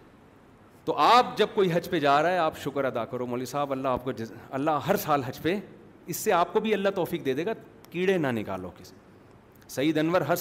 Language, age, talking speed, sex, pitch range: Urdu, 40-59, 235 wpm, male, 140-195 Hz